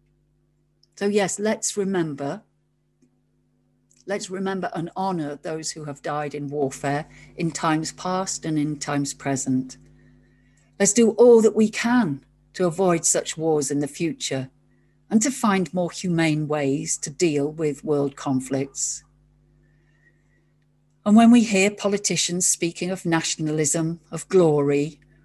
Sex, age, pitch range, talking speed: female, 50-69, 145-190 Hz, 130 wpm